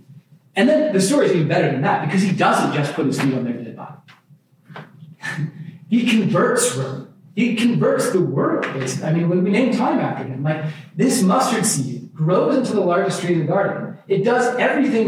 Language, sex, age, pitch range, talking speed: English, male, 30-49, 155-205 Hz, 200 wpm